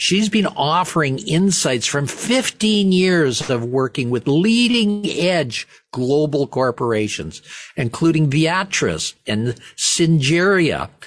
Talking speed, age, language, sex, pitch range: 90 wpm, 50-69, English, male, 140-190 Hz